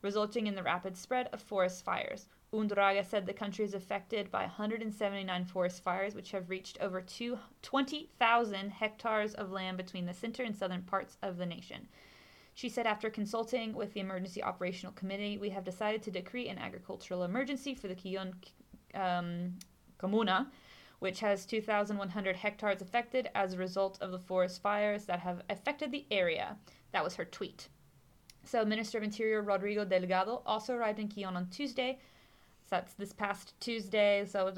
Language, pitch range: English, 190-225 Hz